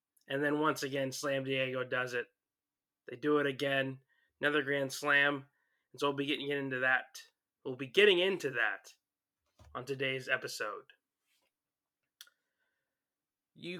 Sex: male